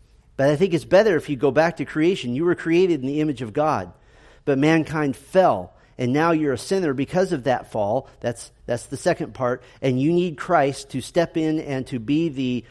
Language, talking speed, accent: English, 220 wpm, American